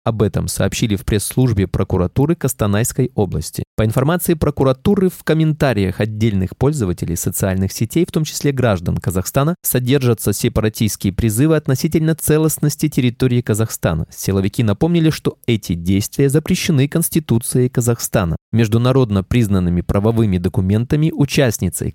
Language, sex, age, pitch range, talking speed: Russian, male, 20-39, 105-155 Hz, 115 wpm